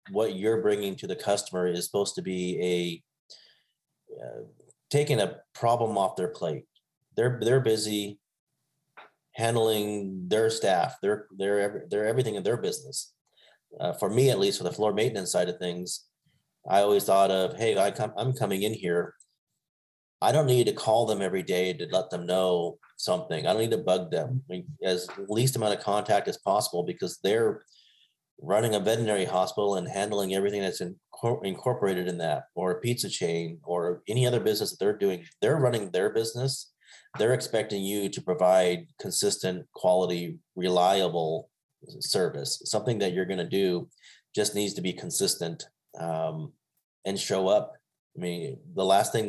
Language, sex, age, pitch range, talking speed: English, male, 30-49, 90-110 Hz, 170 wpm